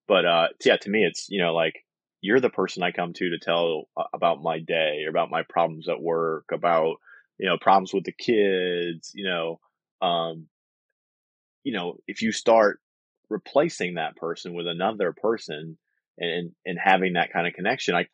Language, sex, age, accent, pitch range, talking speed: English, male, 20-39, American, 80-95 Hz, 180 wpm